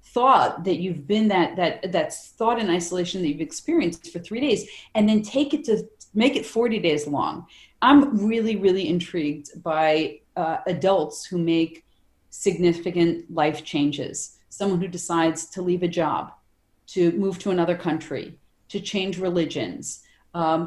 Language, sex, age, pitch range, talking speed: English, female, 40-59, 165-205 Hz, 155 wpm